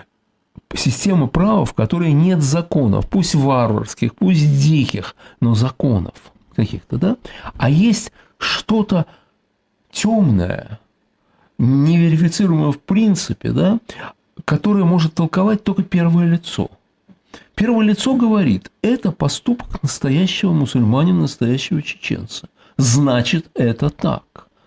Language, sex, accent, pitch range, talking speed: Russian, male, native, 135-190 Hz, 95 wpm